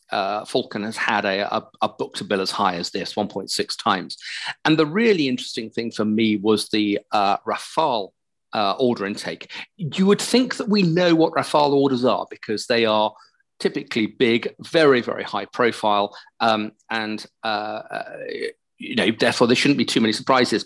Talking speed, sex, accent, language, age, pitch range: 170 wpm, male, British, English, 40-59, 110-160 Hz